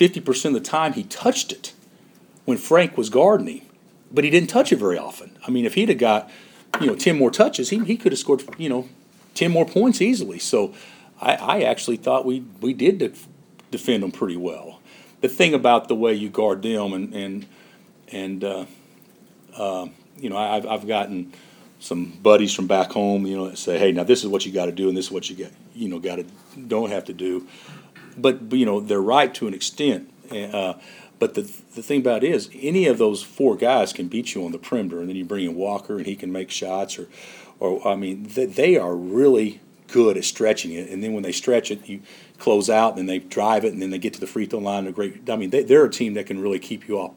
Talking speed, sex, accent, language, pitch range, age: 245 wpm, male, American, English, 95-130 Hz, 40-59